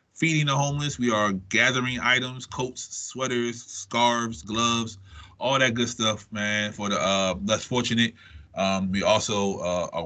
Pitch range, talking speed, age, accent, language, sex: 100-130 Hz, 155 wpm, 20-39, American, English, male